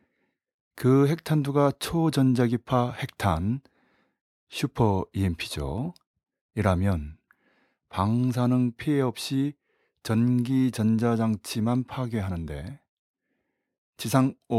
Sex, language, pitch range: male, Korean, 105-125 Hz